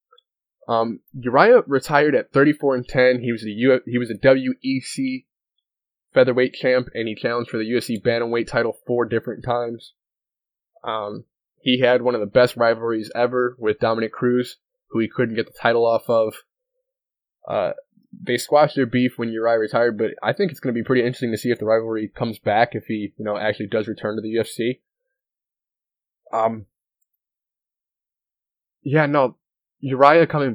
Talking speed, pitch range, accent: 170 wpm, 110-125 Hz, American